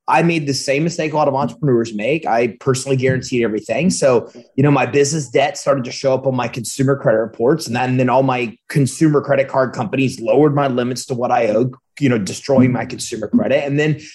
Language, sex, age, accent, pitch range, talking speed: English, male, 30-49, American, 125-155 Hz, 225 wpm